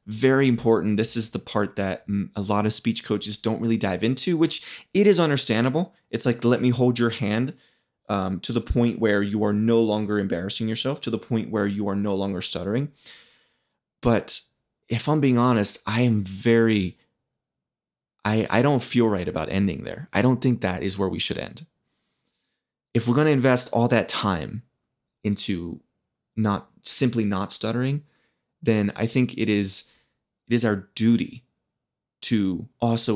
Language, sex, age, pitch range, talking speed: English, male, 20-39, 100-125 Hz, 175 wpm